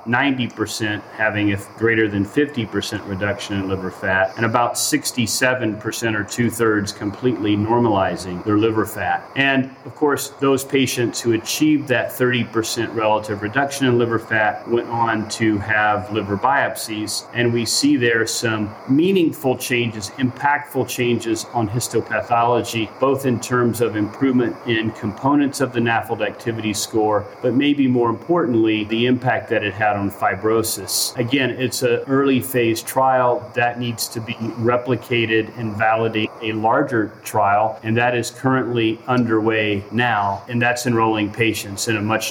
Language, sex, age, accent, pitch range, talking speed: English, male, 40-59, American, 110-125 Hz, 145 wpm